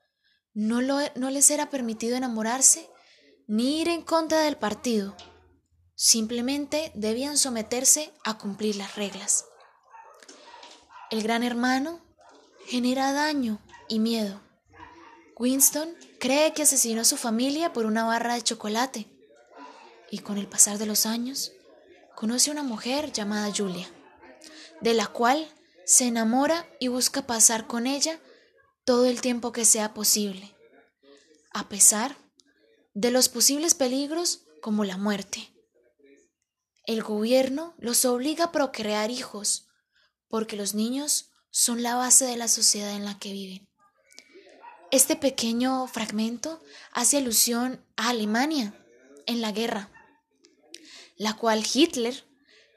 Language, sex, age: Spanish, female, 10-29